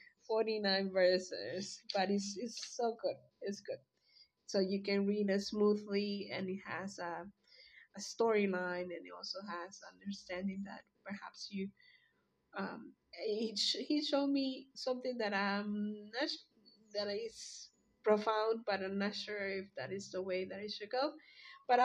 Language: English